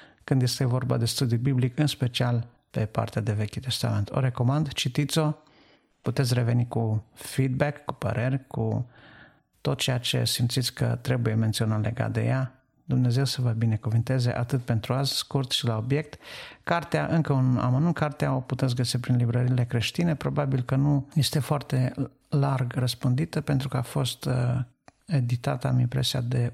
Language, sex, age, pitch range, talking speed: Romanian, male, 50-69, 120-140 Hz, 155 wpm